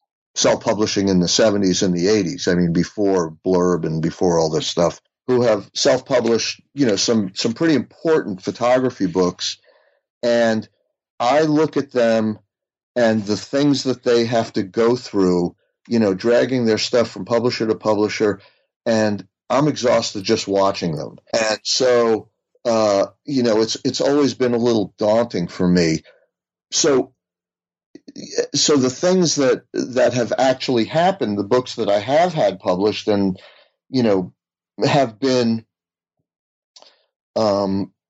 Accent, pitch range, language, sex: American, 100-125 Hz, English, male